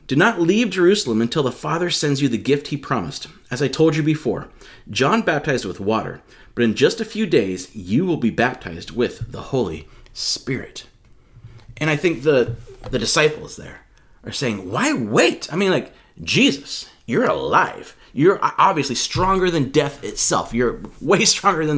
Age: 30-49